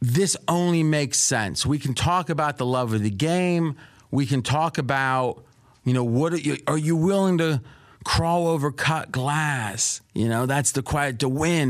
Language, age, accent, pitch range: English, 30-49, American, 115-150 Hz